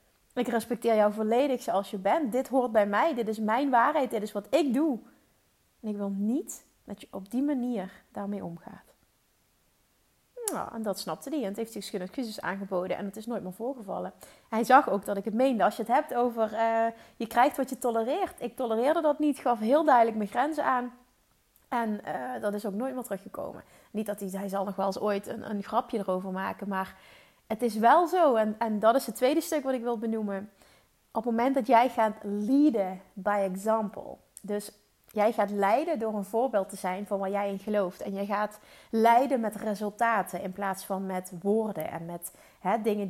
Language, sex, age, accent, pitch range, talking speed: Dutch, female, 30-49, Dutch, 200-245 Hz, 210 wpm